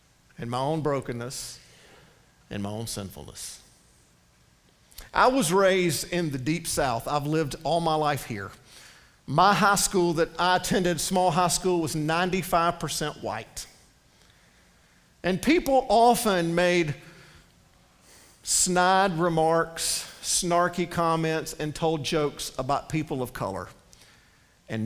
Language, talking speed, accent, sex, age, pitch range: English, 120 wpm, American, male, 50-69, 125-185 Hz